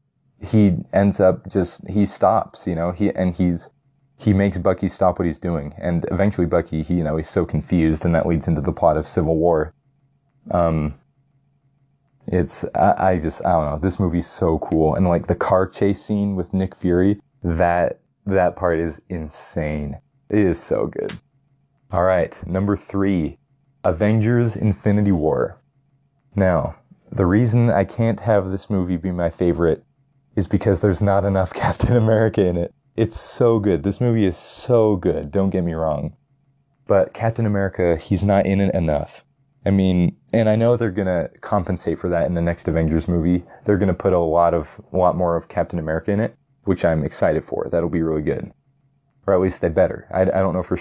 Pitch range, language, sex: 85-115 Hz, English, male